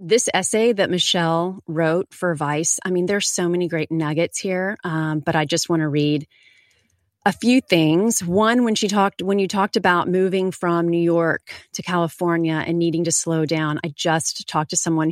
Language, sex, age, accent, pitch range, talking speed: English, female, 30-49, American, 155-185 Hz, 195 wpm